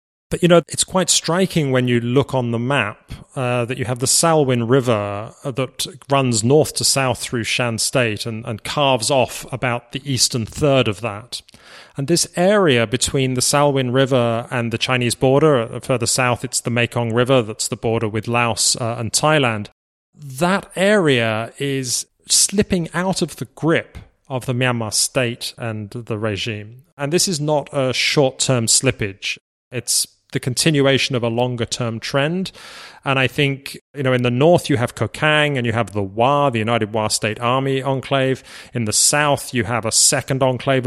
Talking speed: 180 wpm